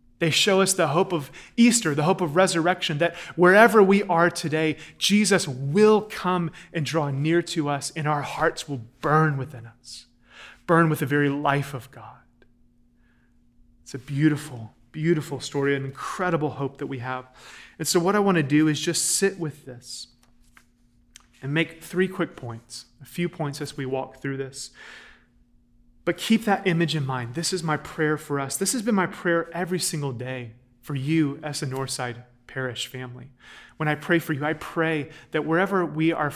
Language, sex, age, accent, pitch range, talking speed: English, male, 30-49, American, 130-170 Hz, 185 wpm